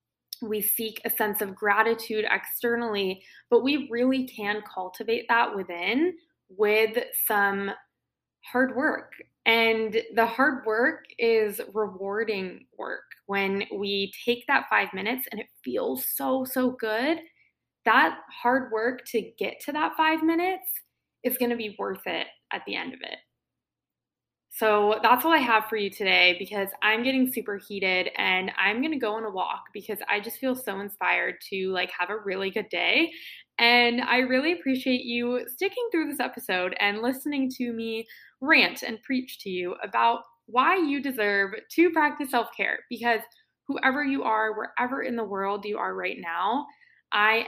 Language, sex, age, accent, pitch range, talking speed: English, female, 20-39, American, 210-260 Hz, 165 wpm